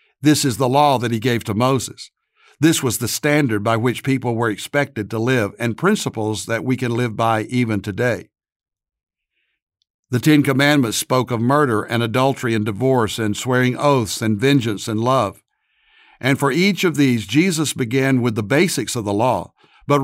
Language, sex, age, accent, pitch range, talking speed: English, male, 60-79, American, 110-145 Hz, 180 wpm